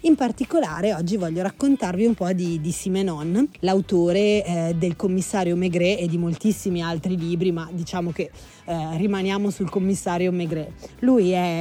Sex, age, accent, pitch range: female, 30-49, native, 180-210 Hz